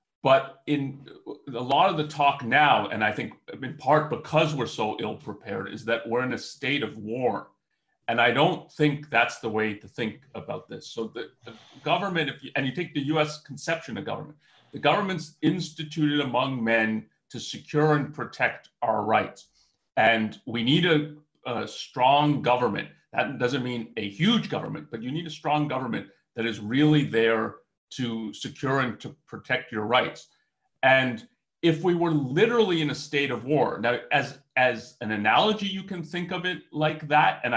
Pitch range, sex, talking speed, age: 120-155 Hz, male, 180 wpm, 40-59